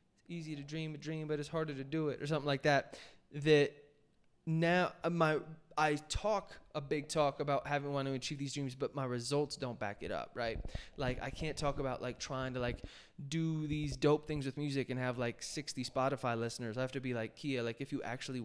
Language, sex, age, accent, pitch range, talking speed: English, male, 20-39, American, 125-150 Hz, 230 wpm